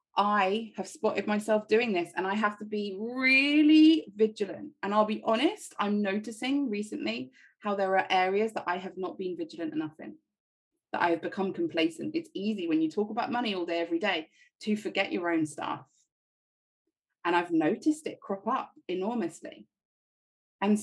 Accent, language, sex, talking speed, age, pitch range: British, English, female, 175 wpm, 20-39, 185-255 Hz